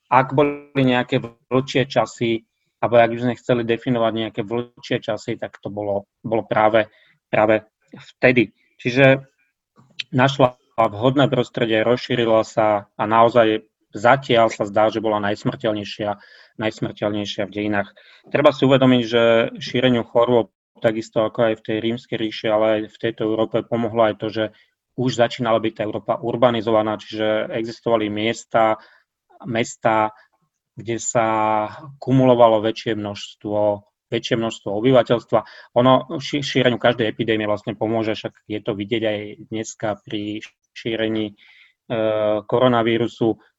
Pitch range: 110-125 Hz